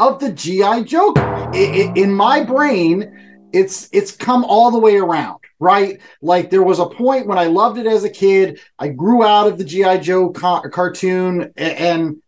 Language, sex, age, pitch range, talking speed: English, male, 30-49, 185-275 Hz, 180 wpm